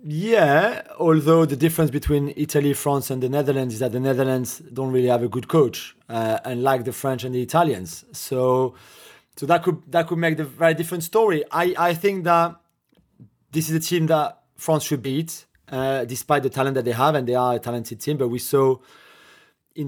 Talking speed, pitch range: 205 wpm, 135-155 Hz